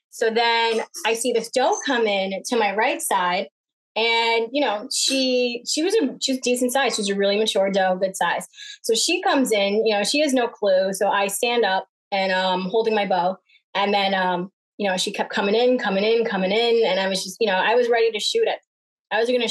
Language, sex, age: English, female, 20-39